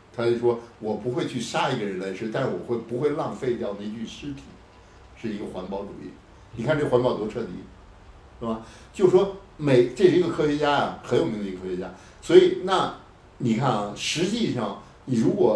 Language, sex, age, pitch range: Chinese, male, 60-79, 100-150 Hz